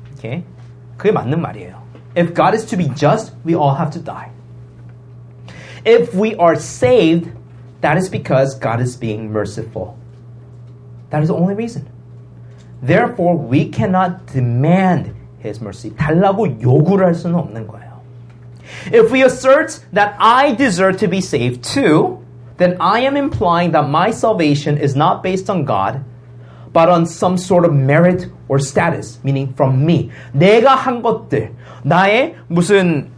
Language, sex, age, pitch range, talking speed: English, male, 30-49, 120-175 Hz, 135 wpm